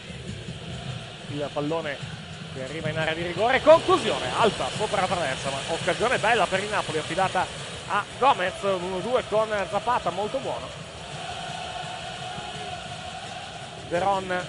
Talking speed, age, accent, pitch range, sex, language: 115 wpm, 30-49, native, 145-170 Hz, male, Italian